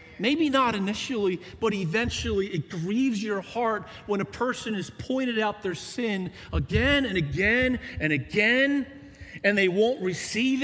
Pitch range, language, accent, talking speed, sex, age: 130-215 Hz, English, American, 145 wpm, male, 40-59